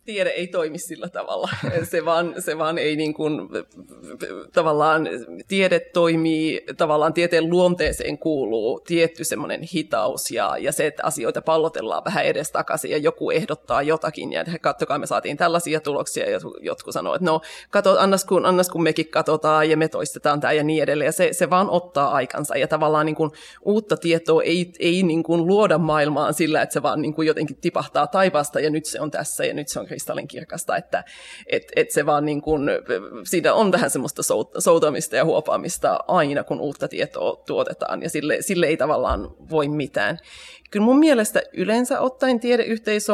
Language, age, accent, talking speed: Finnish, 30-49, native, 175 wpm